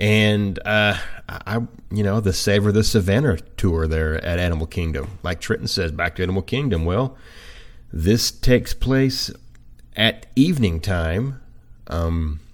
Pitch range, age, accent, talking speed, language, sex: 85-110 Hz, 30-49, American, 140 wpm, English, male